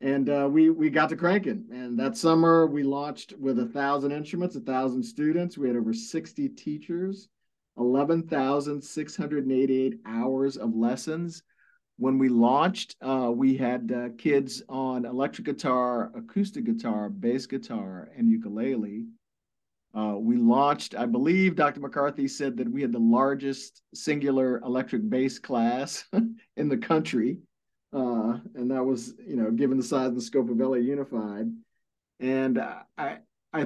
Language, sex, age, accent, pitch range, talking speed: English, male, 50-69, American, 125-175 Hz, 145 wpm